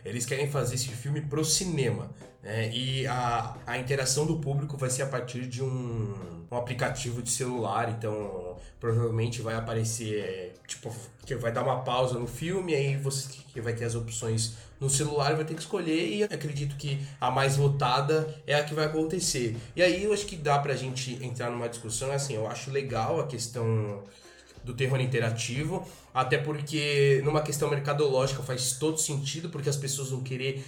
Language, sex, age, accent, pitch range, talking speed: Portuguese, male, 20-39, Brazilian, 120-145 Hz, 180 wpm